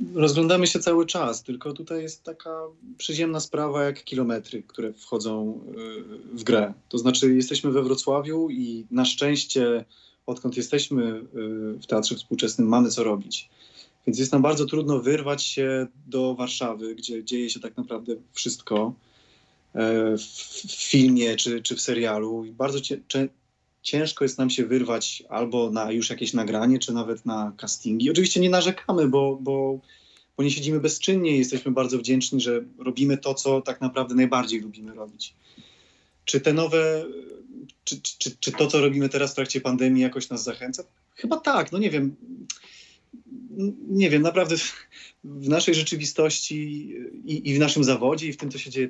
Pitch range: 120-155 Hz